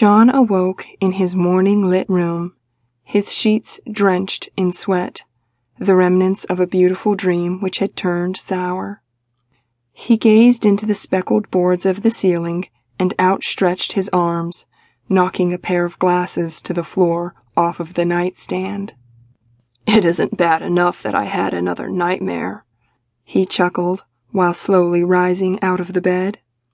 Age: 20-39